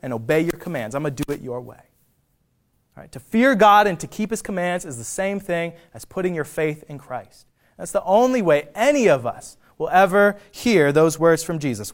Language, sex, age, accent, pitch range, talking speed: English, male, 20-39, American, 140-180 Hz, 225 wpm